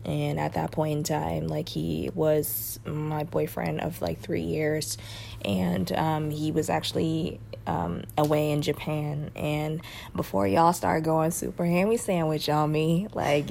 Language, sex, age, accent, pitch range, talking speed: English, female, 20-39, American, 140-155 Hz, 155 wpm